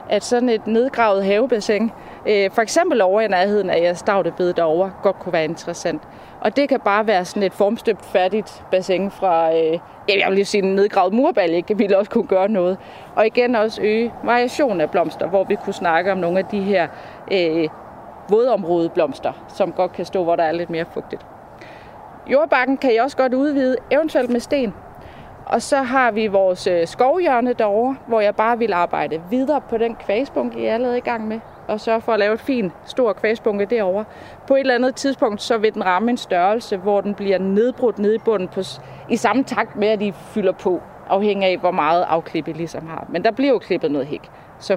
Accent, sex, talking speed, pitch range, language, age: native, female, 205 wpm, 185-235 Hz, Danish, 30-49